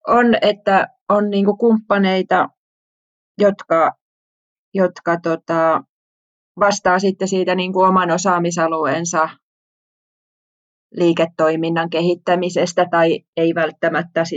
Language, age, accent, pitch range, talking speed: Finnish, 20-39, native, 165-185 Hz, 65 wpm